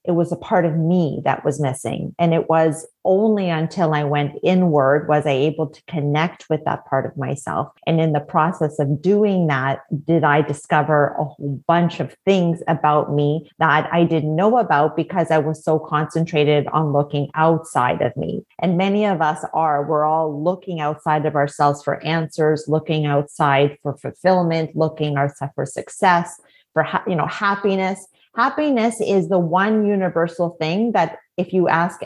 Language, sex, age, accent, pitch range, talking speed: English, female, 30-49, American, 155-185 Hz, 175 wpm